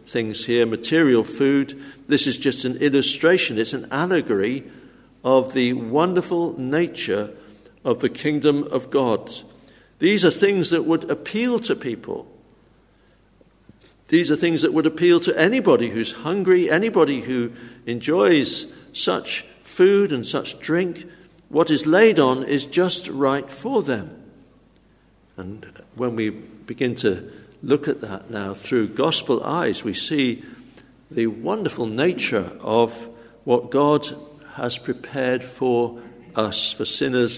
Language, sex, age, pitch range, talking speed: English, male, 60-79, 120-165 Hz, 130 wpm